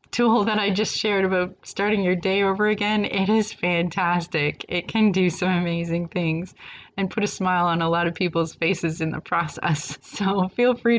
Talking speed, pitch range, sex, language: 195 wpm, 160-190 Hz, female, English